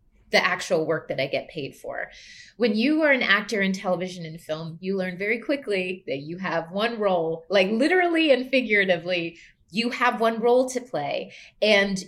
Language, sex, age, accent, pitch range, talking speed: English, female, 30-49, American, 190-250 Hz, 185 wpm